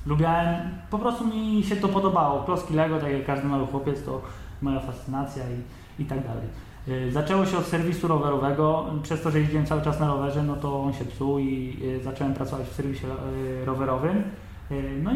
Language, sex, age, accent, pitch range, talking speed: Polish, male, 20-39, native, 135-180 Hz, 180 wpm